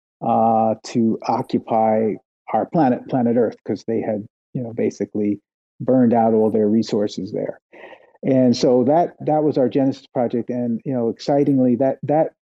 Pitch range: 115-135 Hz